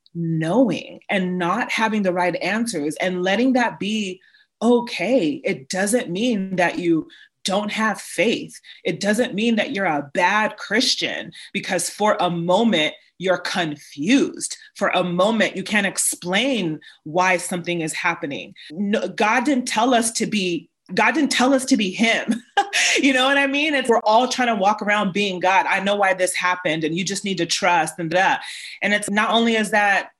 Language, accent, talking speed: English, American, 180 wpm